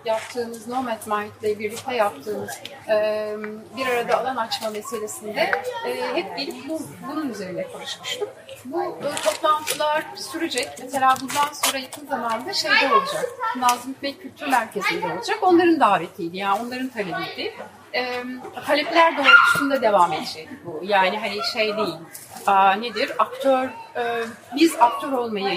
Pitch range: 210-300 Hz